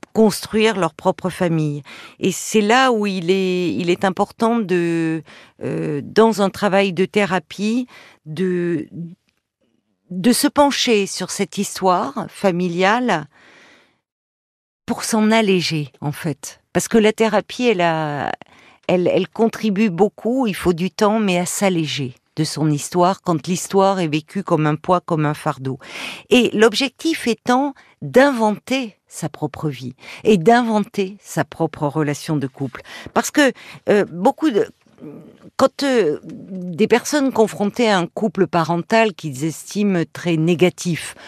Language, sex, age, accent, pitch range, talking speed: French, female, 50-69, French, 155-215 Hz, 140 wpm